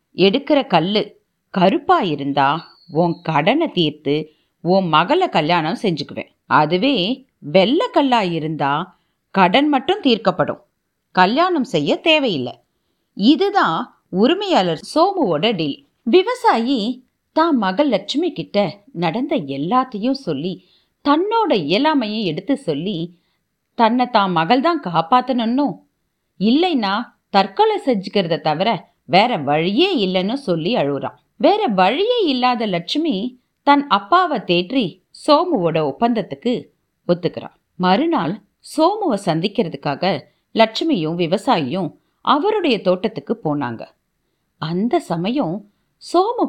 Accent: native